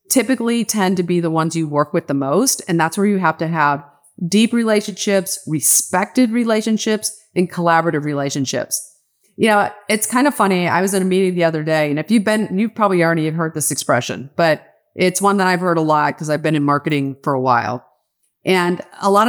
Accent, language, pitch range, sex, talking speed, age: American, English, 160-215 Hz, female, 210 wpm, 30-49